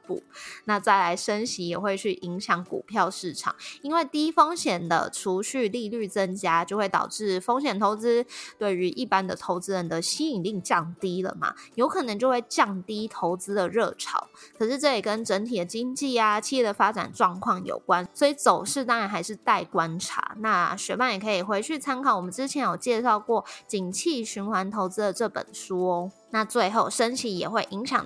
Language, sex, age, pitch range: Chinese, female, 20-39, 190-245 Hz